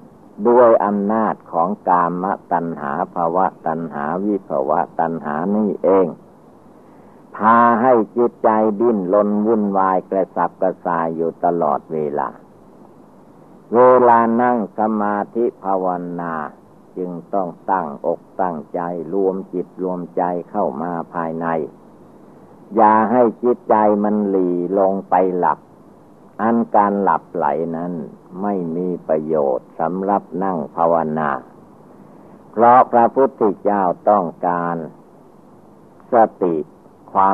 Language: Thai